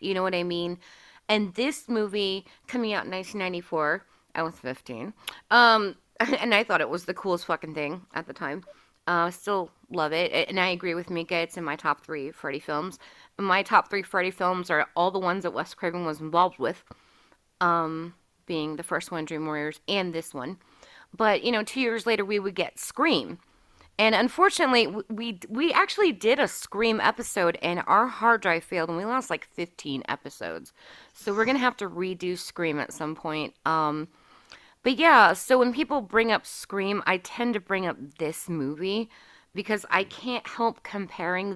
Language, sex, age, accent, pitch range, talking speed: English, female, 30-49, American, 170-220 Hz, 190 wpm